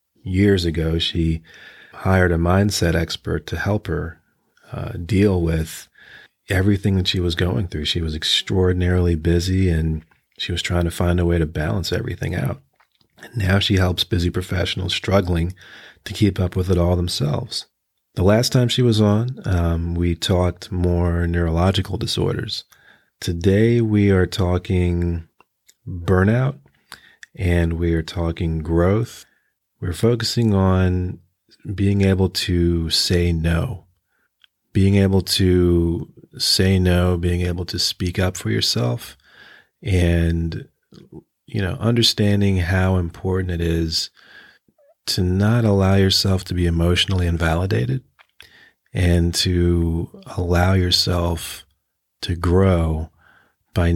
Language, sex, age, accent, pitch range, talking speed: English, male, 40-59, American, 85-100 Hz, 125 wpm